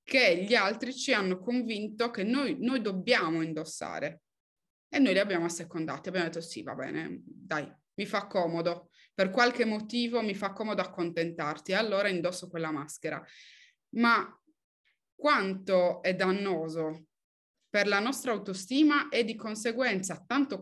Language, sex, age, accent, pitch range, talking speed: Italian, female, 20-39, native, 170-230 Hz, 140 wpm